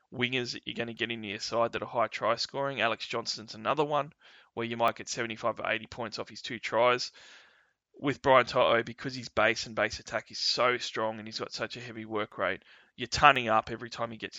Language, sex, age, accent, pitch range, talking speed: English, male, 20-39, Australian, 110-125 Hz, 240 wpm